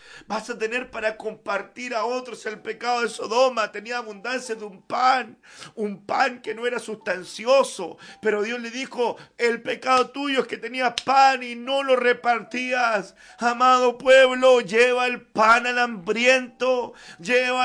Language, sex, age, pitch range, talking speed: Spanish, male, 50-69, 240-265 Hz, 155 wpm